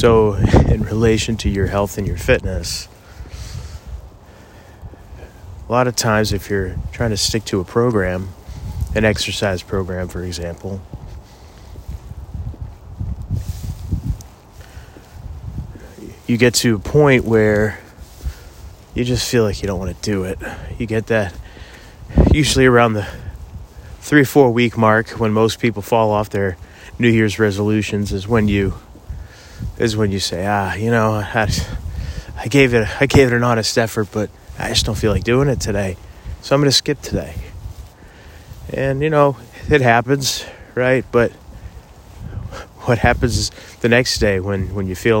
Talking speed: 150 wpm